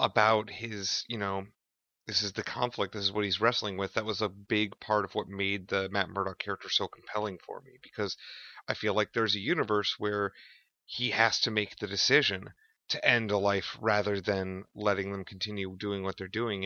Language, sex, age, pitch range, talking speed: English, male, 30-49, 100-115 Hz, 205 wpm